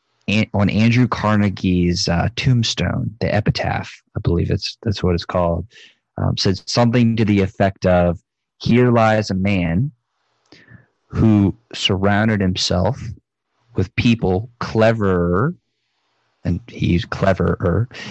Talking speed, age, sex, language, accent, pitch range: 115 wpm, 20-39, male, English, American, 105-140 Hz